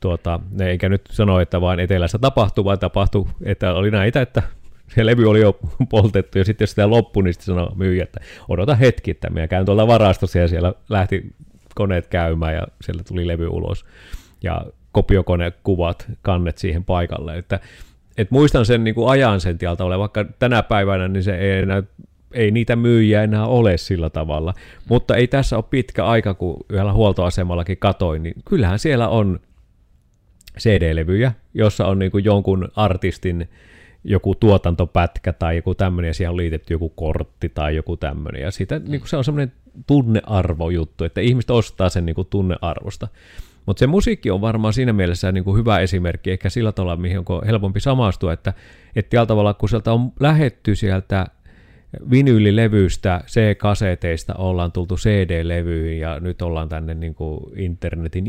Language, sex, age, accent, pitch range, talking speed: Finnish, male, 30-49, native, 90-110 Hz, 165 wpm